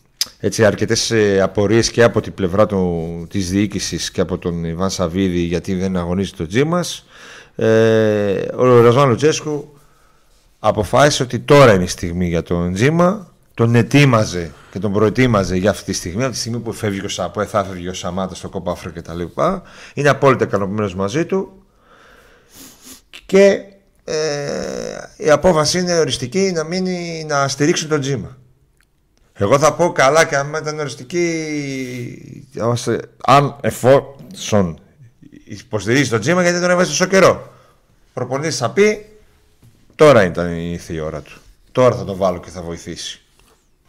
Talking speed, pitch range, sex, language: 145 wpm, 95-145 Hz, male, Greek